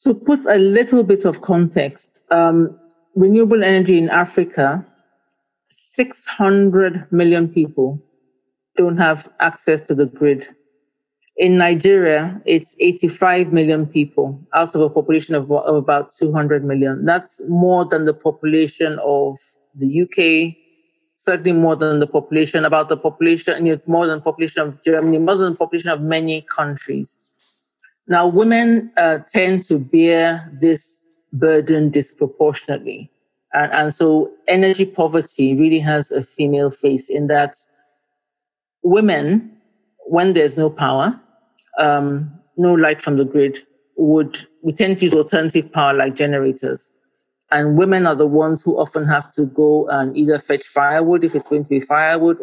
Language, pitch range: English, 145-175 Hz